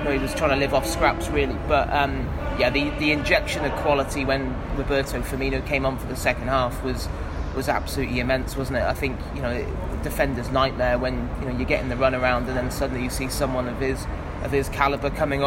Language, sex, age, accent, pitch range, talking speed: English, male, 20-39, British, 130-145 Hz, 235 wpm